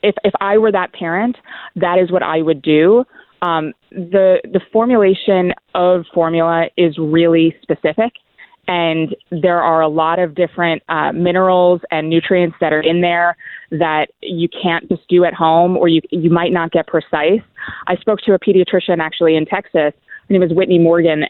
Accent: American